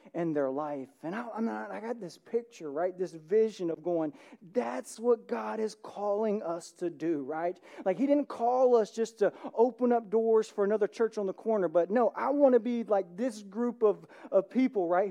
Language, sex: English, male